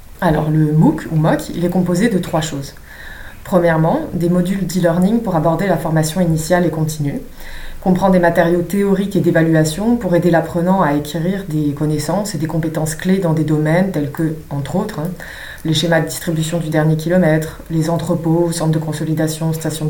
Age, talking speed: 20-39, 180 wpm